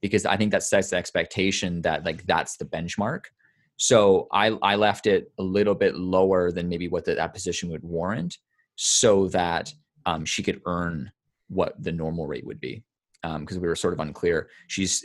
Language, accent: English, American